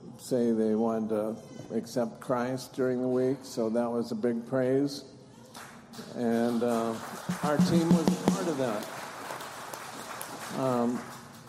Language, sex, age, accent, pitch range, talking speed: English, male, 50-69, American, 115-140 Hz, 130 wpm